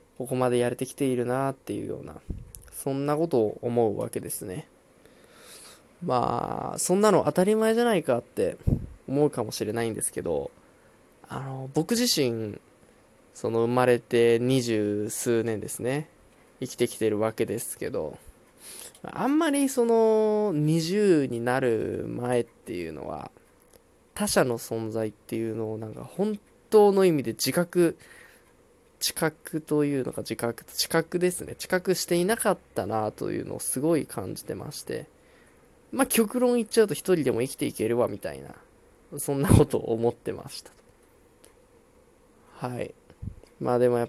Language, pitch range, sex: Japanese, 120-185 Hz, male